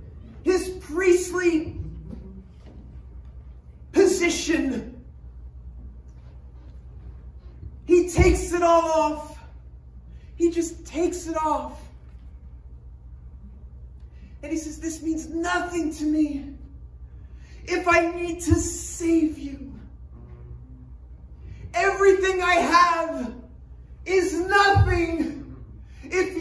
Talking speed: 70 wpm